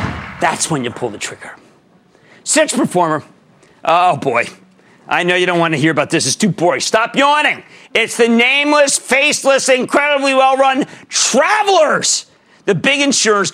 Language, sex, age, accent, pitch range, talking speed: English, male, 50-69, American, 180-280 Hz, 150 wpm